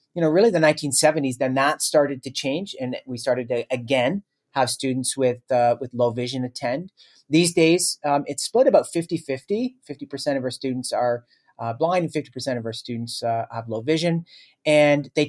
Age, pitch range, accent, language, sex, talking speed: 40-59, 125-150 Hz, American, English, male, 190 wpm